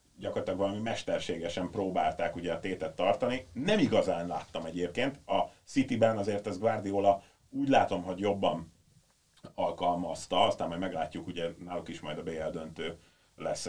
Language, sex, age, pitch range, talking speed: Hungarian, male, 30-49, 85-105 Hz, 145 wpm